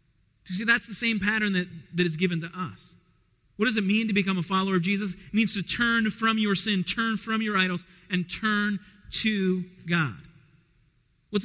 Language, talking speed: English, 200 wpm